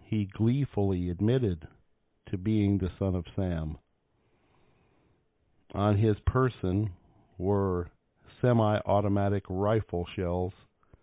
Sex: male